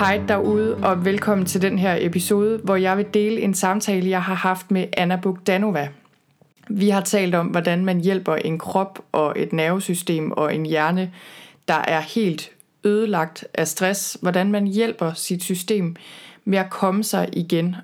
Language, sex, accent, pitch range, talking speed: Danish, female, native, 175-205 Hz, 170 wpm